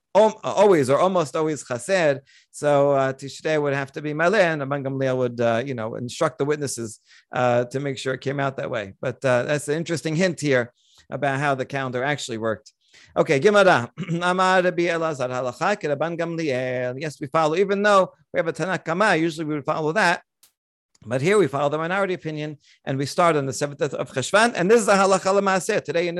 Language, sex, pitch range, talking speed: English, male, 140-175 Hz, 200 wpm